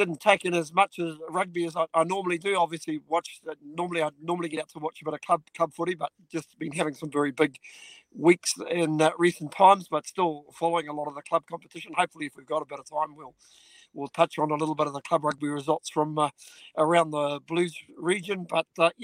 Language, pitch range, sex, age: English, 155-180 Hz, male, 50-69